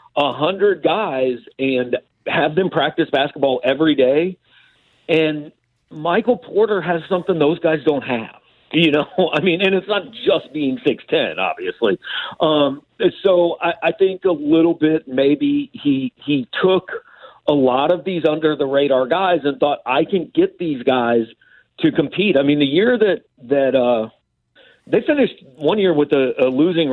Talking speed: 165 wpm